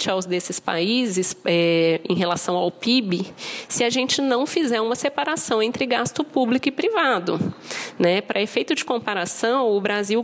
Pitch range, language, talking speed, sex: 190-270 Hz, Portuguese, 160 wpm, female